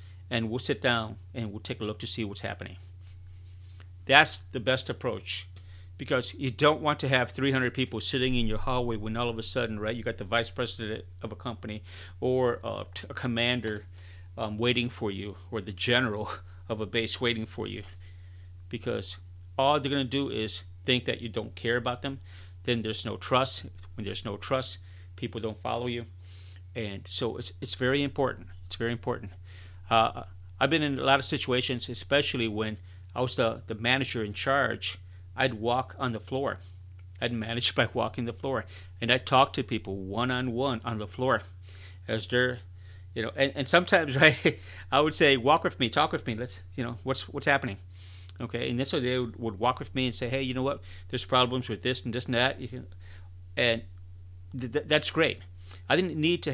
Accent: American